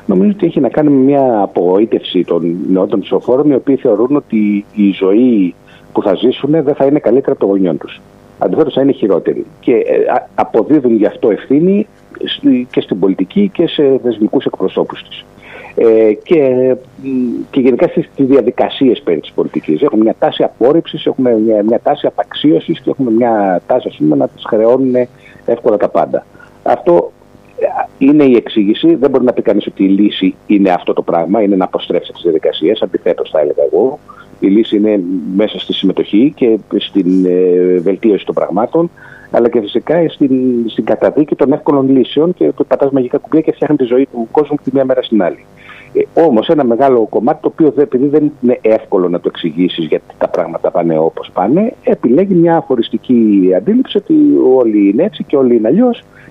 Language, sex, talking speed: Greek, male, 175 wpm